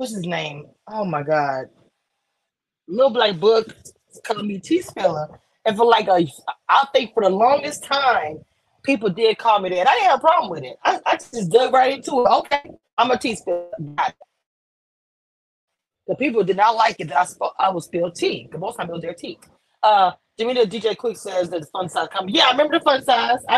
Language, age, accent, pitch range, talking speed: English, 20-39, American, 170-250 Hz, 210 wpm